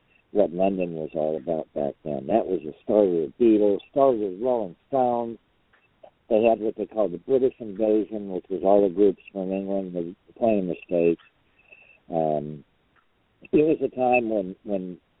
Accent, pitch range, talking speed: American, 90-120 Hz, 175 wpm